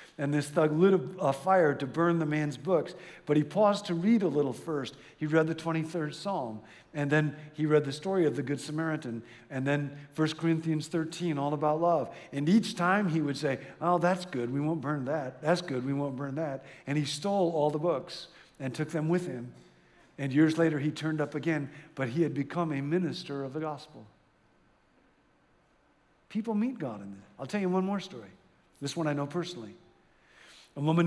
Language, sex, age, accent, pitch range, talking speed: English, male, 50-69, American, 145-175 Hz, 205 wpm